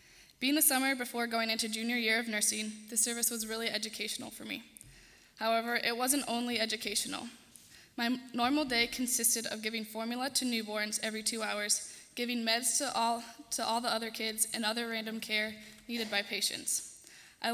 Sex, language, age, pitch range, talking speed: female, English, 10-29, 220-245 Hz, 170 wpm